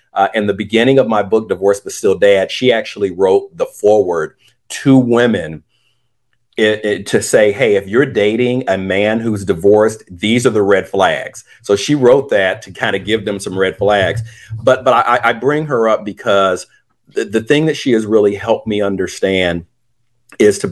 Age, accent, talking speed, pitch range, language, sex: 50-69, American, 195 wpm, 95-130 Hz, English, male